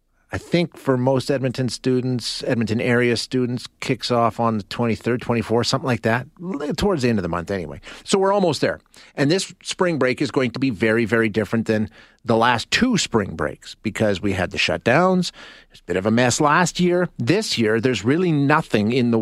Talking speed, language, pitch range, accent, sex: 205 wpm, English, 115-175 Hz, American, male